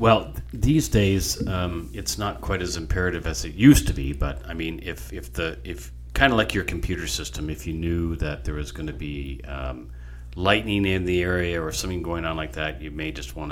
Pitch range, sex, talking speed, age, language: 70-90 Hz, male, 225 wpm, 40-59, English